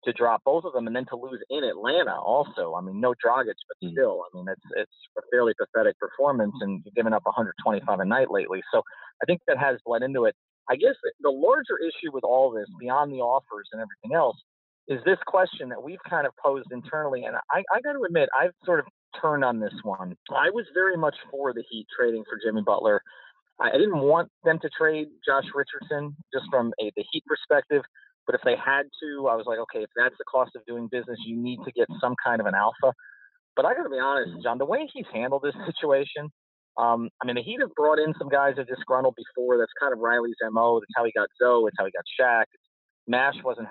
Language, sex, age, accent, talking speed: English, male, 30-49, American, 235 wpm